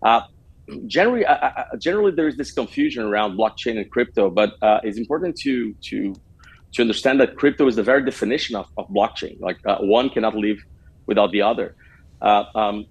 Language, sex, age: English, male, 40-59